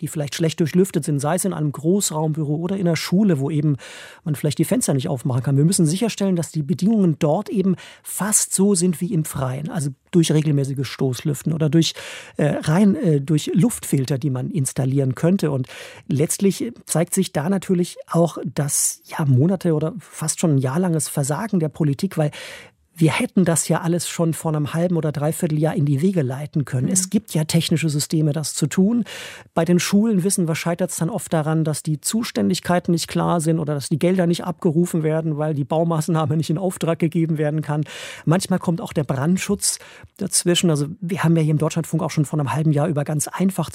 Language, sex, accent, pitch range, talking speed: German, male, German, 150-180 Hz, 205 wpm